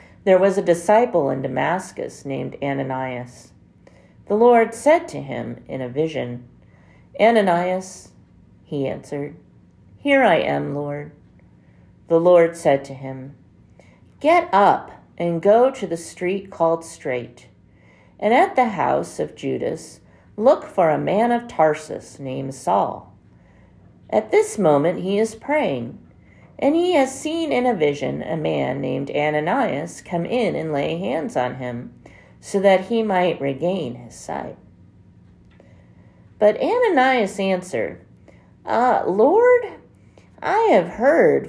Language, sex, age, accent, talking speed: English, female, 50-69, American, 130 wpm